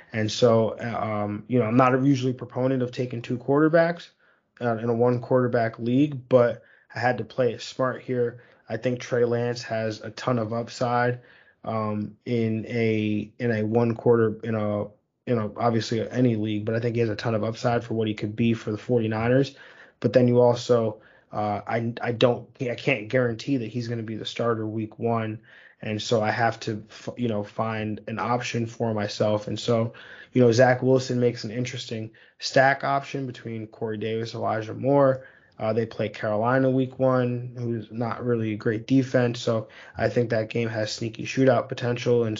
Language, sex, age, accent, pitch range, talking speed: English, male, 20-39, American, 110-125 Hz, 195 wpm